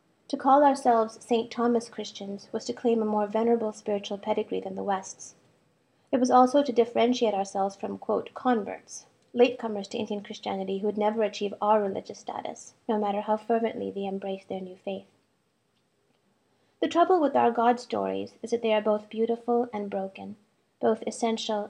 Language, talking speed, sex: English, 170 wpm, female